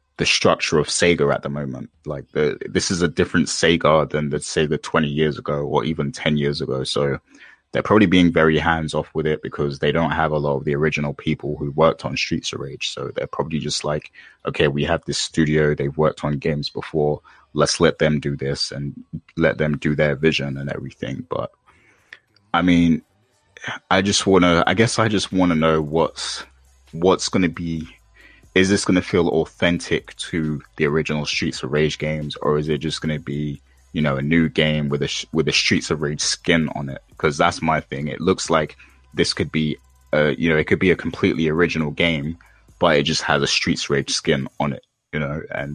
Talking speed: 220 wpm